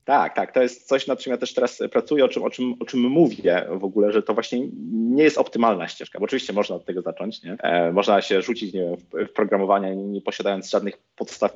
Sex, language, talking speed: male, Polish, 235 wpm